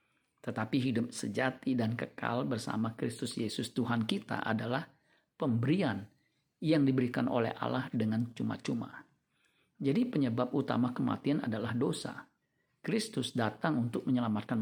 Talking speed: 115 wpm